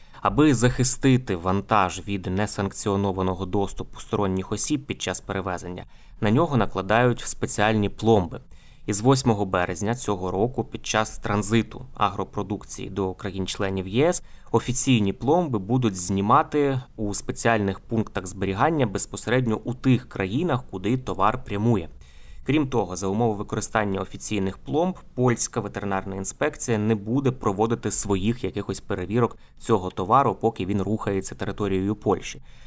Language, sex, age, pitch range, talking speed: Ukrainian, male, 20-39, 100-120 Hz, 120 wpm